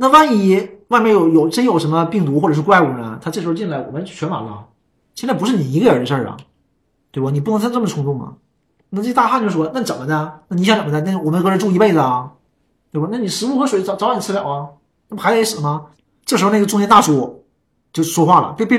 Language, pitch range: Chinese, 145-200 Hz